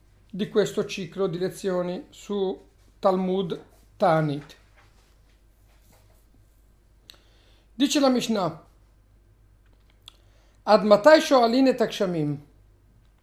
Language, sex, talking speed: Italian, male, 75 wpm